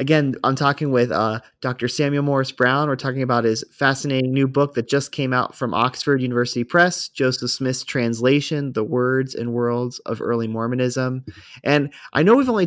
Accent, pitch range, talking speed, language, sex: American, 120-150 Hz, 185 wpm, English, male